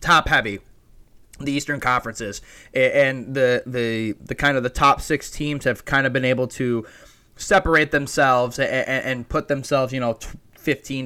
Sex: male